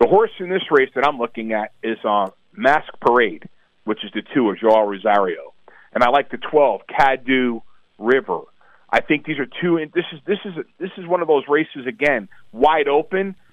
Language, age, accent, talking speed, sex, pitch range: English, 40-59, American, 210 wpm, male, 120-160 Hz